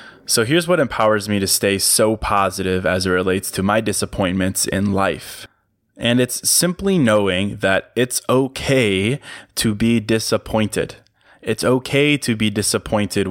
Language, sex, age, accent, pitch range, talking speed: English, male, 20-39, American, 100-120 Hz, 145 wpm